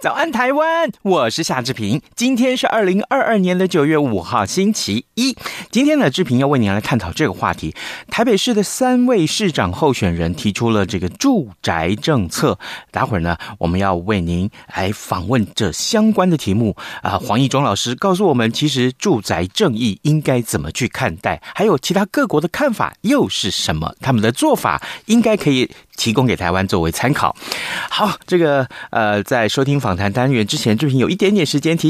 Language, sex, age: Chinese, male, 30-49